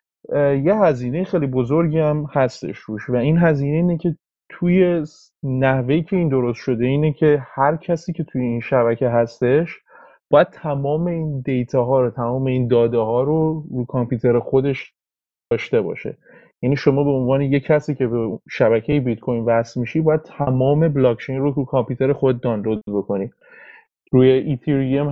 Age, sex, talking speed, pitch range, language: 30-49, male, 160 wpm, 120-145 Hz, Persian